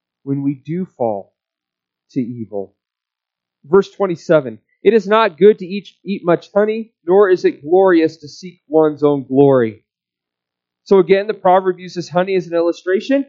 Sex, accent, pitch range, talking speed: male, American, 135-205 Hz, 160 wpm